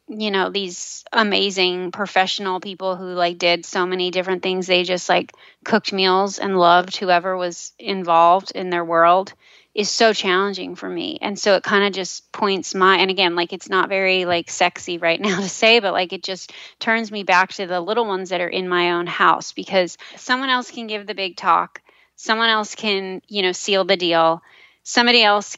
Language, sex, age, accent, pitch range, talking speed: English, female, 20-39, American, 180-205 Hz, 200 wpm